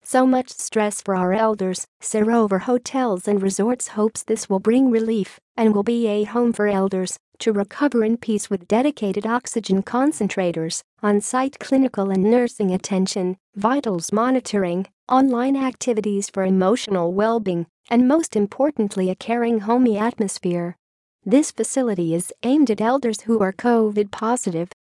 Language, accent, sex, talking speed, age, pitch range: English, American, female, 140 wpm, 40-59, 195-245 Hz